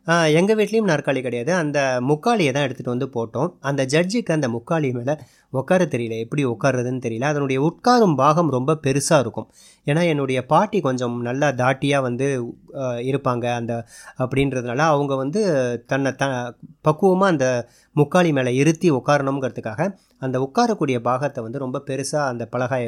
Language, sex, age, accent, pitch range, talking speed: Tamil, male, 30-49, native, 125-160 Hz, 140 wpm